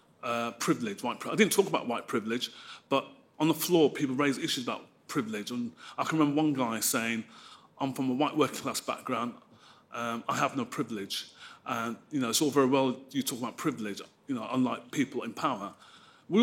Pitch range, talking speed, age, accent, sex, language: 130-180 Hz, 205 wpm, 30-49, British, male, English